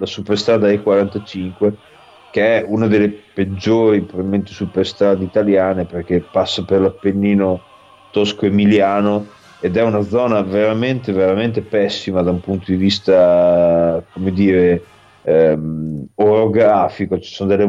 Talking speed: 115 wpm